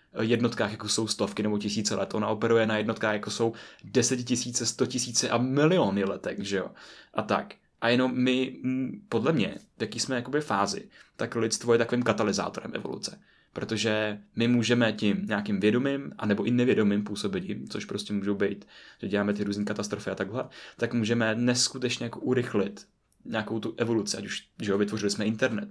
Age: 20-39